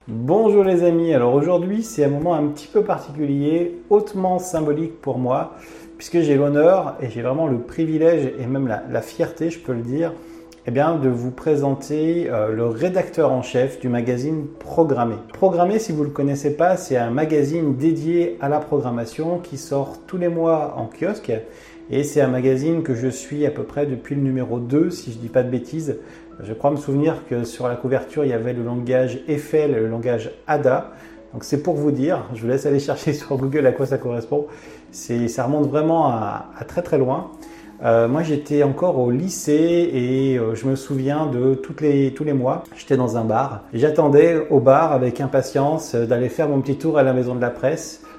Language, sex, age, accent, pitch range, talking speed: French, male, 30-49, French, 130-160 Hz, 205 wpm